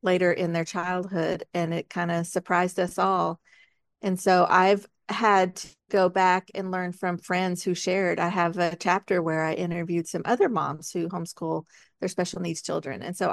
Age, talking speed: 40-59, 190 wpm